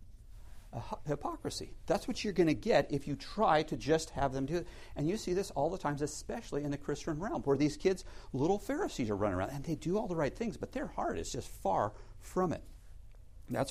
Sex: male